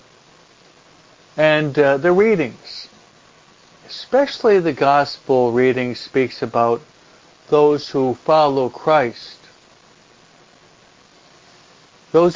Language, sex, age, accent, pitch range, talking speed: English, male, 60-79, American, 130-165 Hz, 75 wpm